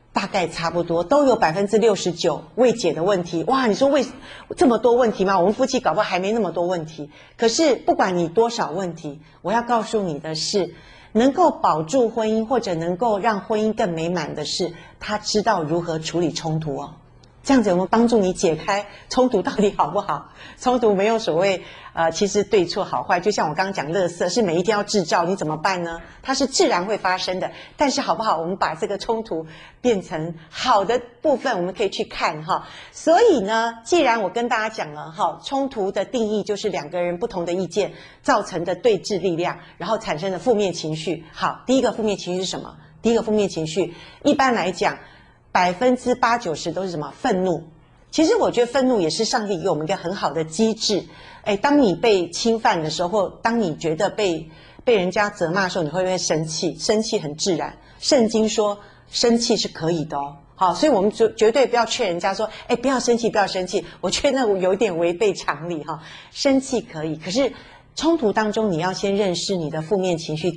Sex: female